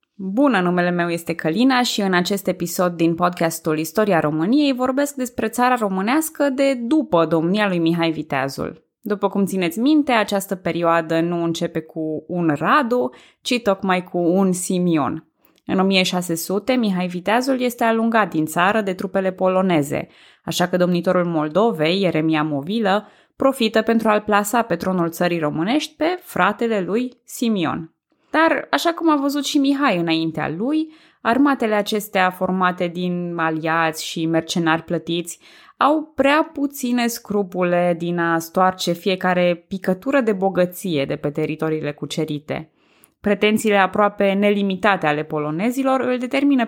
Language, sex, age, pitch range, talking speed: Romanian, female, 20-39, 170-250 Hz, 140 wpm